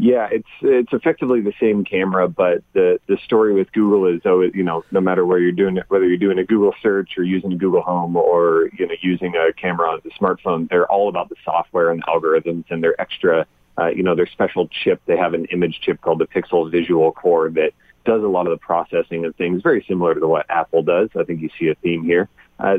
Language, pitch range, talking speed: English, 85-115 Hz, 240 wpm